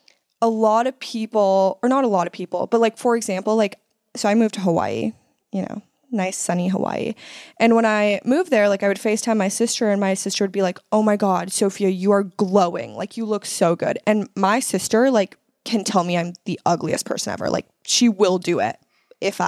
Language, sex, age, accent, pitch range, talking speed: English, female, 20-39, American, 185-230 Hz, 220 wpm